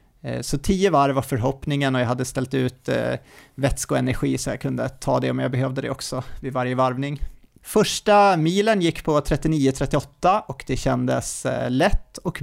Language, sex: Swedish, male